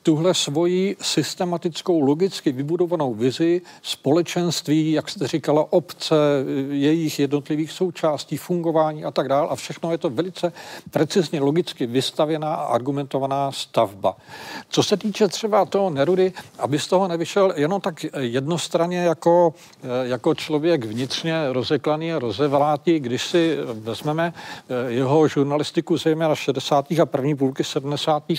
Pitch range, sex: 135-165 Hz, male